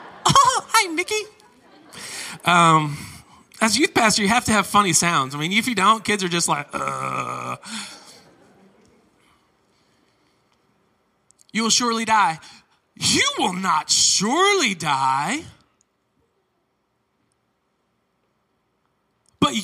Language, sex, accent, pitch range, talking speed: English, male, American, 155-225 Hz, 100 wpm